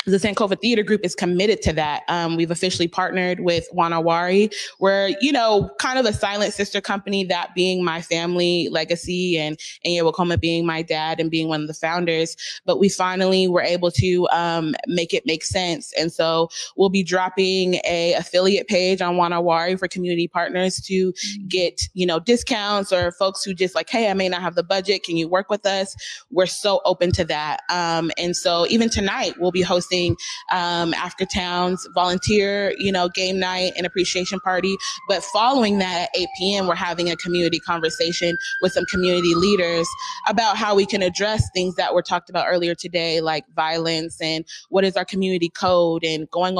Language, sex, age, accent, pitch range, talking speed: English, female, 20-39, American, 170-195 Hz, 190 wpm